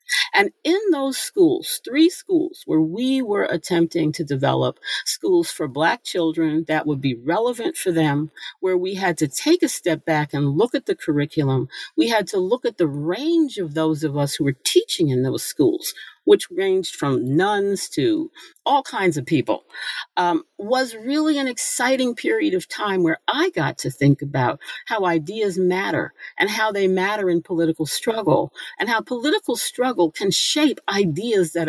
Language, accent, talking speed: English, American, 175 wpm